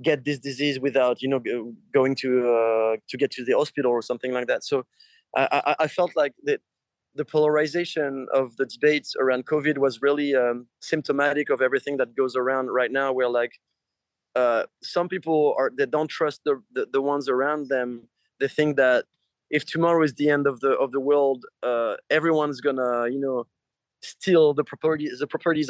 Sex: male